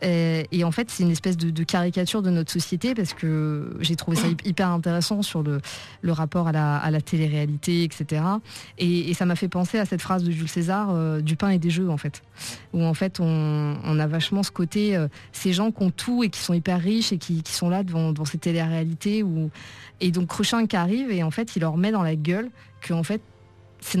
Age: 20-39